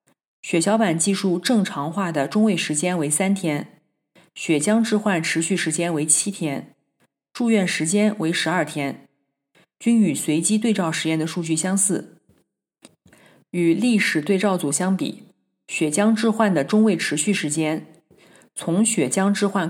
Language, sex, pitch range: Chinese, female, 160-195 Hz